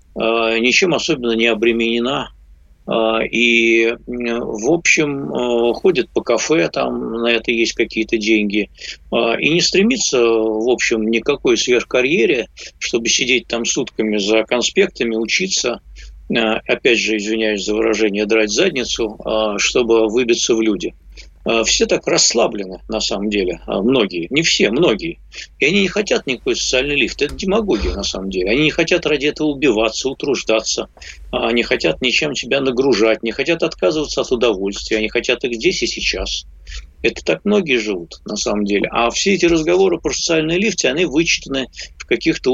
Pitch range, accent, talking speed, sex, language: 110-140 Hz, native, 145 wpm, male, Russian